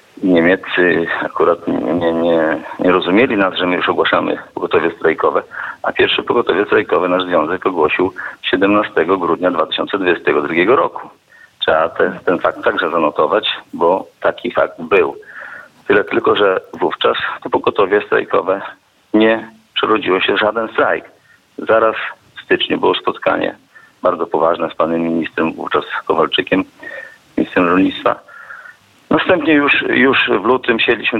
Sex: male